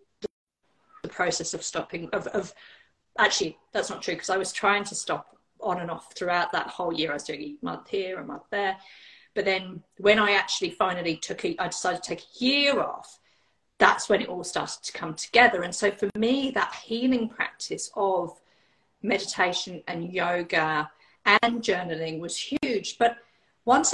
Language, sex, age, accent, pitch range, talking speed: English, female, 40-59, British, 205-315 Hz, 180 wpm